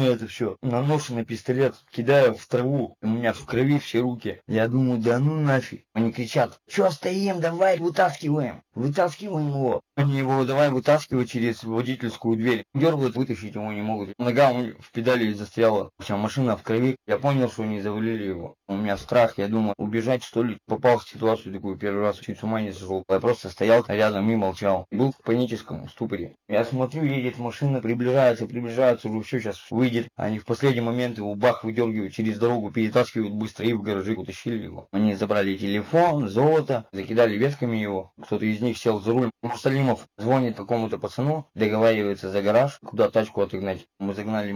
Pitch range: 105-130 Hz